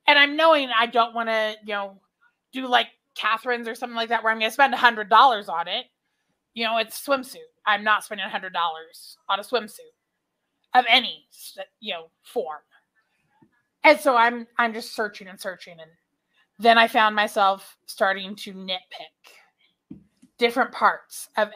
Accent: American